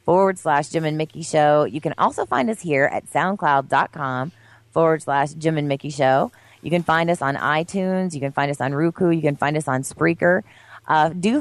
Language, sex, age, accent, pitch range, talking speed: English, female, 30-49, American, 135-165 Hz, 210 wpm